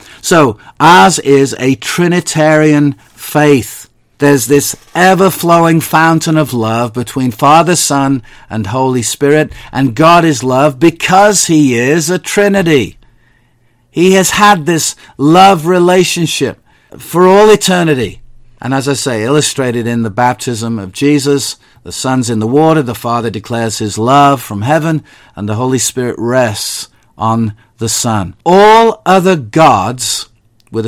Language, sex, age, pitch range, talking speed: English, male, 50-69, 120-170 Hz, 135 wpm